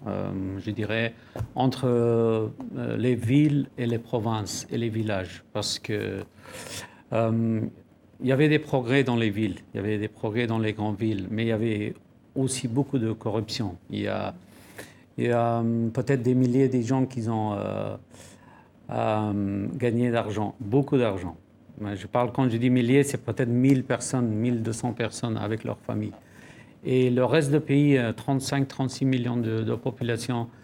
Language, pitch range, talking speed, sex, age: French, 110-130 Hz, 165 wpm, male, 50-69